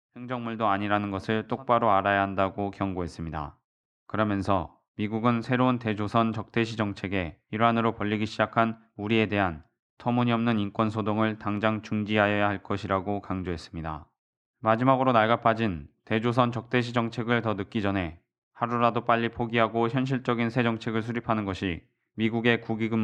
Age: 20-39